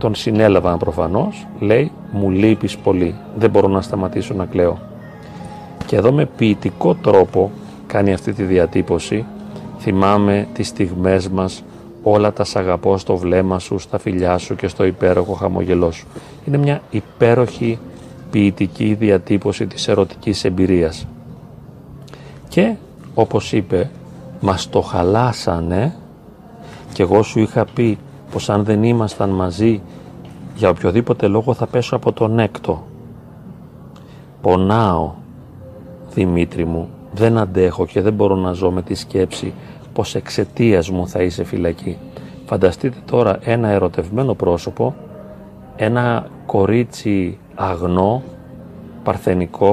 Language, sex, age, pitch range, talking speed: Greek, male, 40-59, 90-115 Hz, 120 wpm